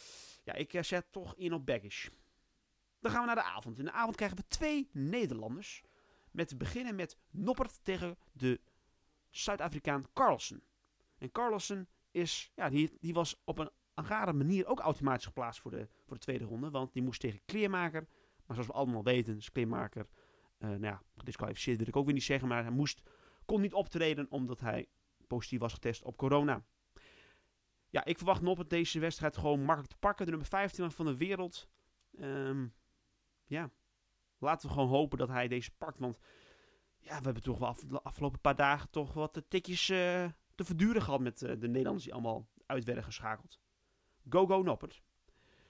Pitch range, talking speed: 125-180 Hz, 185 wpm